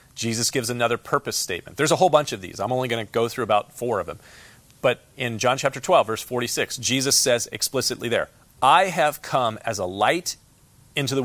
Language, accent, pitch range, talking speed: English, American, 115-140 Hz, 215 wpm